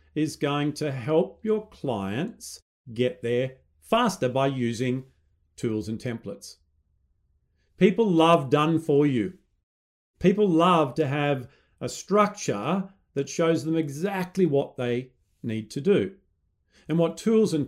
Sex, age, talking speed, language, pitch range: male, 40-59, 130 wpm, English, 100-165 Hz